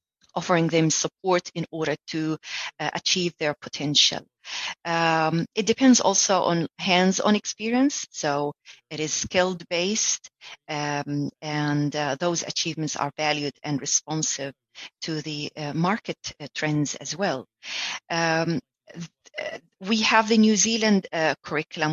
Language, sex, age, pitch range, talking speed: English, female, 30-49, 150-190 Hz, 130 wpm